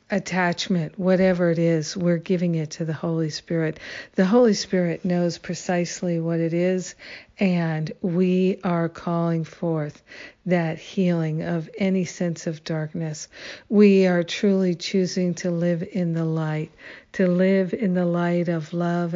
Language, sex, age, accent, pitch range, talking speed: English, female, 50-69, American, 165-185 Hz, 145 wpm